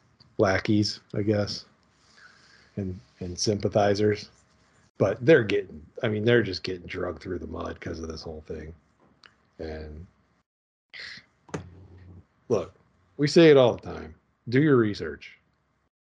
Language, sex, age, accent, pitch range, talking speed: English, male, 40-59, American, 95-115 Hz, 125 wpm